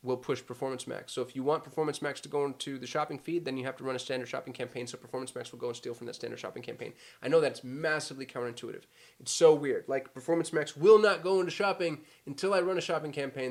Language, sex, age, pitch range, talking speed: English, male, 20-39, 130-190 Hz, 260 wpm